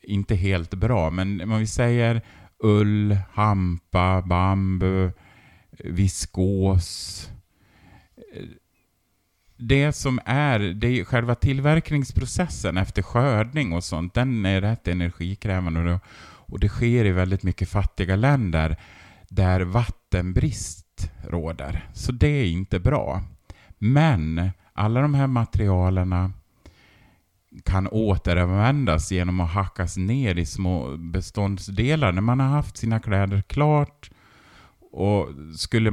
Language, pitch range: Swedish, 90-110 Hz